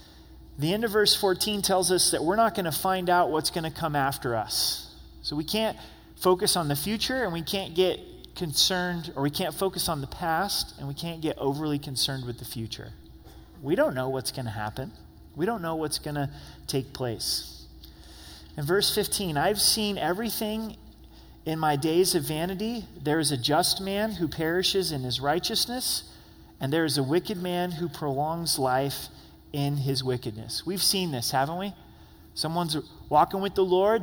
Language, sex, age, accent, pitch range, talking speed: English, male, 30-49, American, 130-190 Hz, 180 wpm